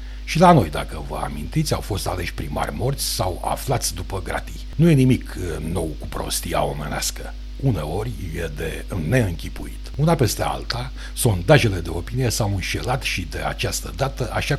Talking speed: 160 wpm